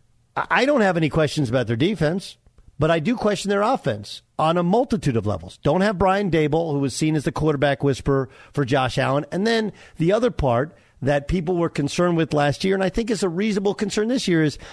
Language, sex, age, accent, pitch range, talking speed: English, male, 50-69, American, 120-185 Hz, 225 wpm